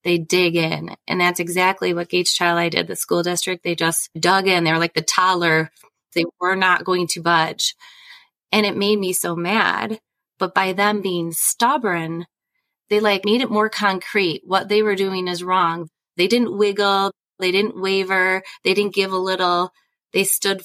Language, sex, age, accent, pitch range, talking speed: English, female, 30-49, American, 180-225 Hz, 190 wpm